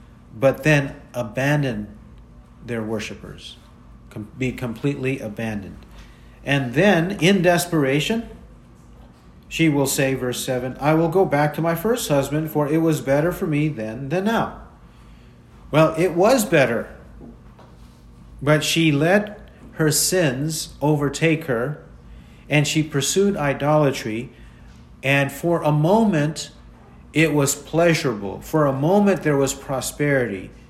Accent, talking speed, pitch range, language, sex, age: American, 120 wpm, 115-155 Hz, English, male, 50-69